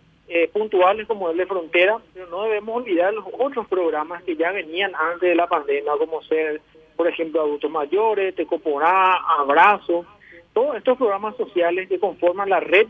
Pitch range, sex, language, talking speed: 160-205 Hz, male, Spanish, 170 wpm